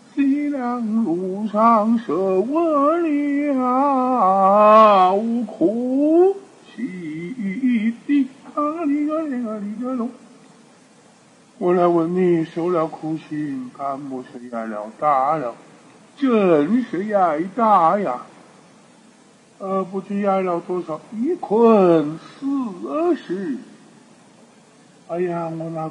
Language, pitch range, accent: Chinese, 195-260 Hz, American